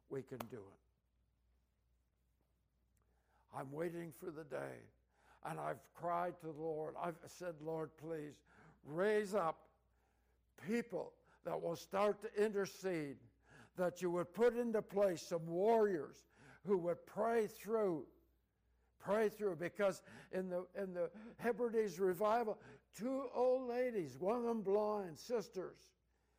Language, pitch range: English, 165-220 Hz